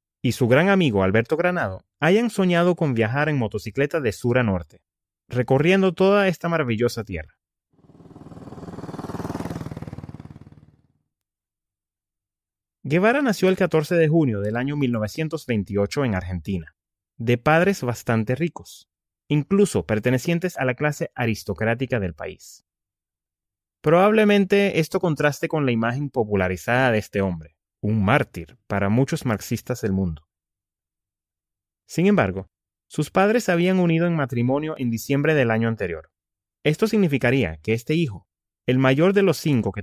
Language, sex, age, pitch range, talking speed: English, male, 30-49, 100-160 Hz, 130 wpm